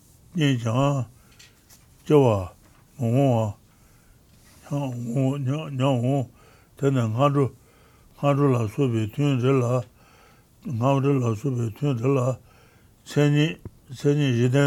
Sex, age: male, 60-79